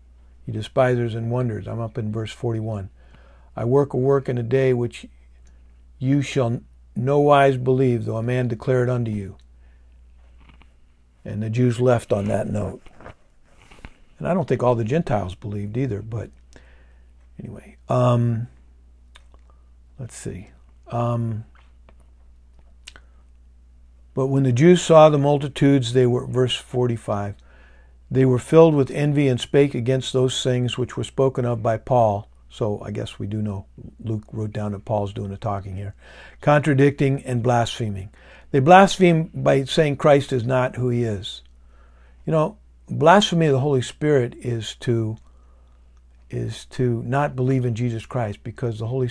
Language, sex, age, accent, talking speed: English, male, 50-69, American, 150 wpm